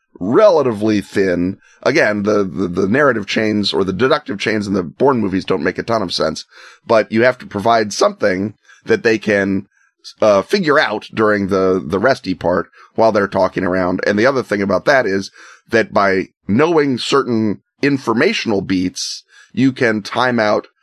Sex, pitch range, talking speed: male, 100-125 Hz, 175 wpm